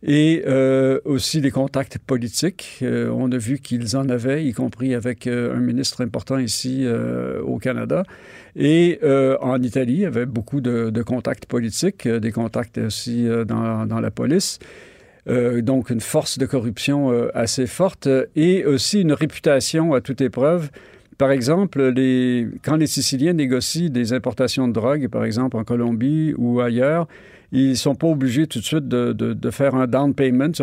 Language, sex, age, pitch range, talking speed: French, male, 50-69, 120-140 Hz, 190 wpm